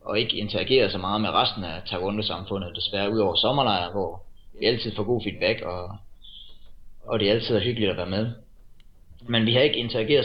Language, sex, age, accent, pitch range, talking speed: Danish, male, 20-39, native, 100-120 Hz, 200 wpm